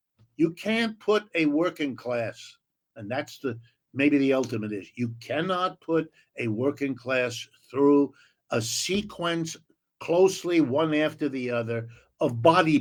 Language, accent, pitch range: English, American, 125-165 Hz